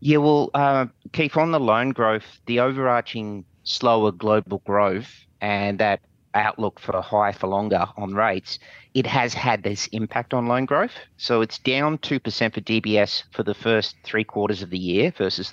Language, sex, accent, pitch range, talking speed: English, male, Australian, 100-120 Hz, 175 wpm